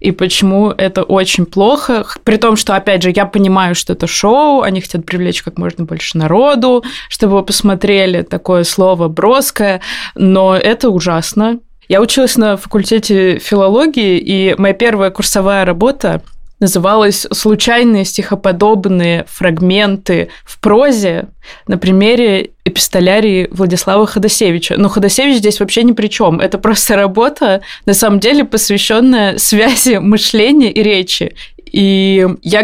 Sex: female